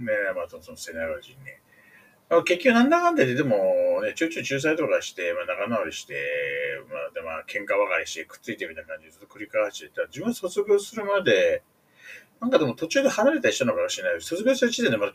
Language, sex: Japanese, male